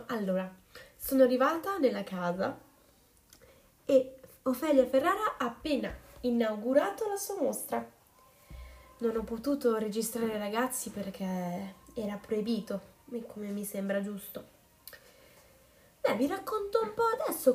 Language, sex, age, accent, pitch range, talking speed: Italian, female, 20-39, native, 205-270 Hz, 110 wpm